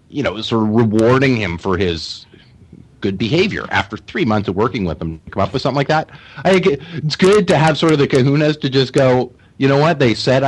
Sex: male